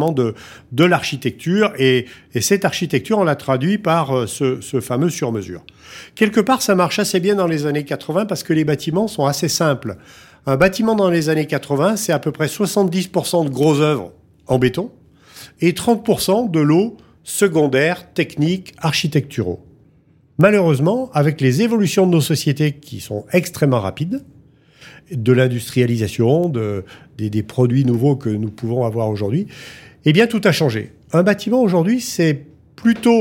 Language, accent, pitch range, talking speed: French, French, 135-195 Hz, 160 wpm